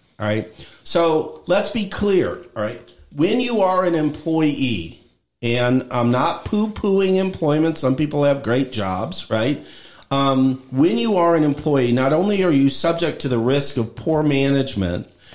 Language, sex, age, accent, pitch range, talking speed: English, male, 50-69, American, 120-155 Hz, 165 wpm